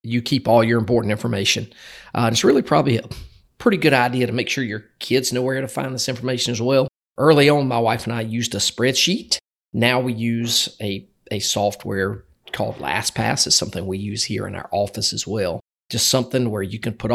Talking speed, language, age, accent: 210 wpm, English, 40-59, American